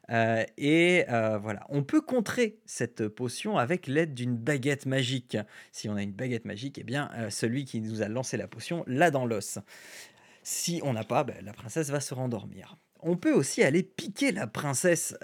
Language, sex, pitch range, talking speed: French, male, 110-140 Hz, 195 wpm